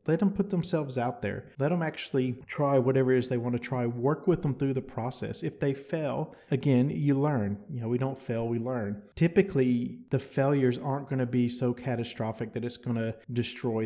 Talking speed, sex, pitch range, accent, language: 215 wpm, male, 115-135 Hz, American, English